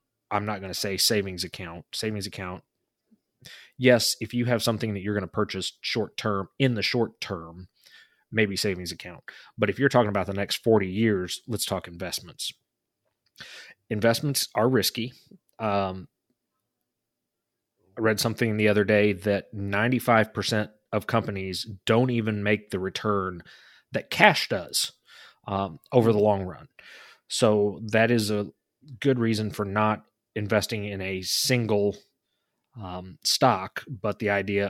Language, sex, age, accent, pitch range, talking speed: English, male, 30-49, American, 95-110 Hz, 145 wpm